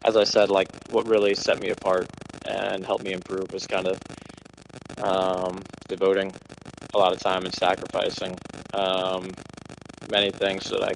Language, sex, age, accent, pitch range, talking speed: English, male, 20-39, American, 95-100 Hz, 165 wpm